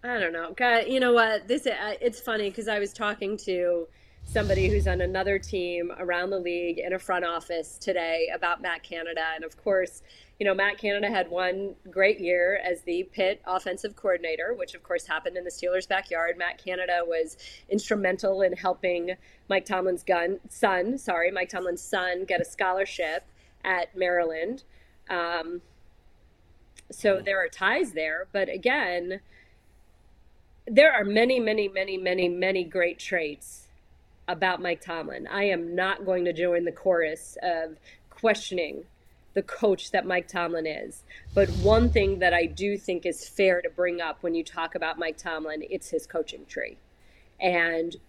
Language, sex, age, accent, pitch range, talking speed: English, female, 30-49, American, 170-195 Hz, 165 wpm